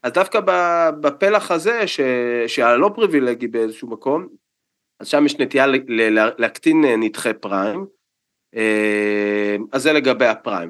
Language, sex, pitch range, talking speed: Hebrew, male, 115-160 Hz, 125 wpm